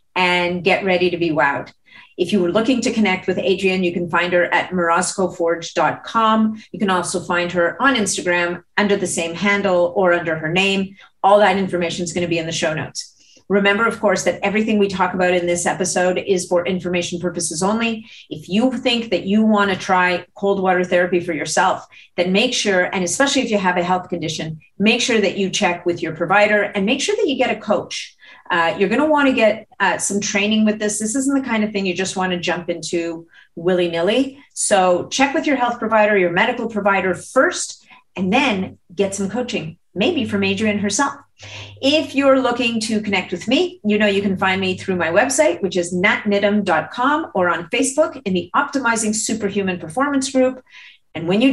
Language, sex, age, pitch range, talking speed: English, female, 40-59, 180-225 Hz, 205 wpm